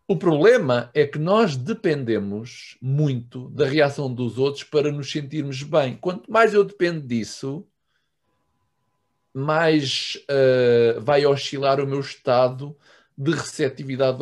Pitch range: 120-155 Hz